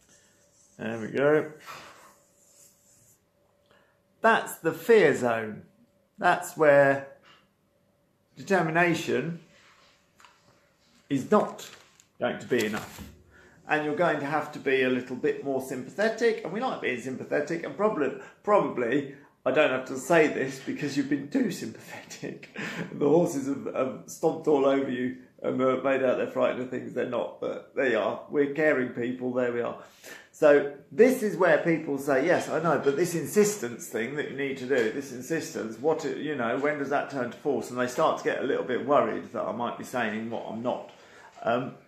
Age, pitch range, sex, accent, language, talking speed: 40-59, 130-175 Hz, male, British, English, 175 wpm